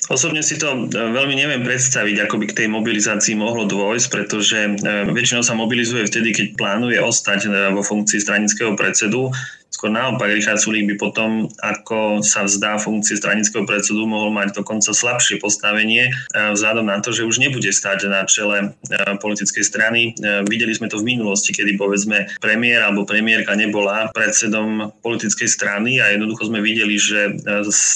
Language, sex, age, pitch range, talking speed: Slovak, male, 20-39, 105-115 Hz, 155 wpm